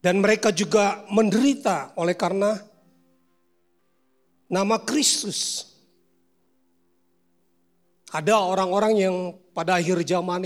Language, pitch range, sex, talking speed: Indonesian, 155-235 Hz, male, 80 wpm